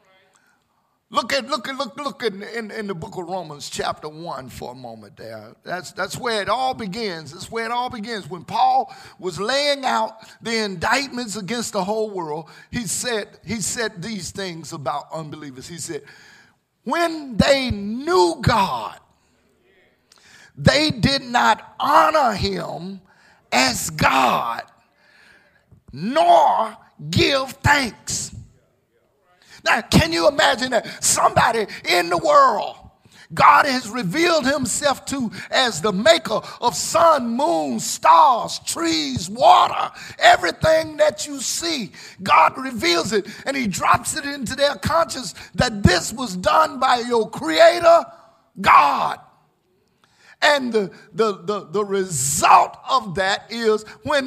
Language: English